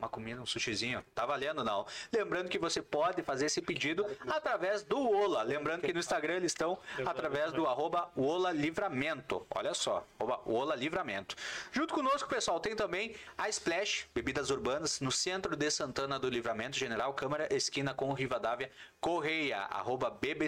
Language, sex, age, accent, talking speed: Portuguese, male, 30-49, Brazilian, 160 wpm